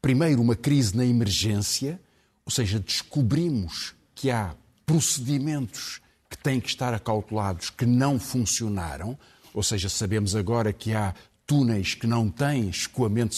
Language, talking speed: Portuguese, 135 wpm